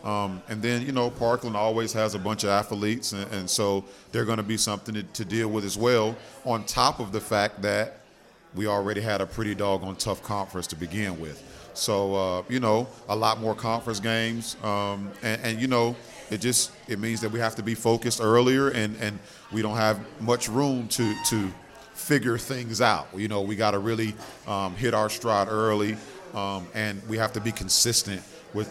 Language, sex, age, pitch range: English, male, 40-59, 105-120 Hz